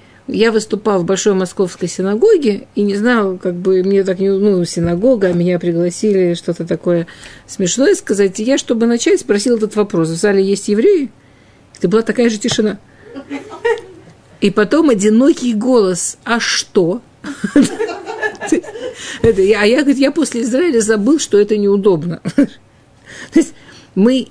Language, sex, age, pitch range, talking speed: Russian, female, 50-69, 185-245 Hz, 135 wpm